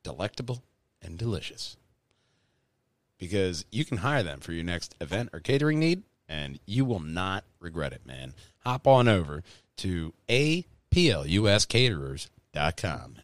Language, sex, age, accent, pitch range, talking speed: English, male, 40-59, American, 90-125 Hz, 120 wpm